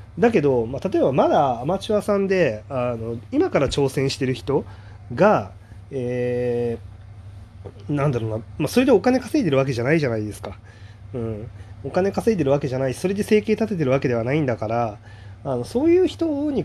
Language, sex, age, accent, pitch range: Japanese, male, 20-39, native, 105-160 Hz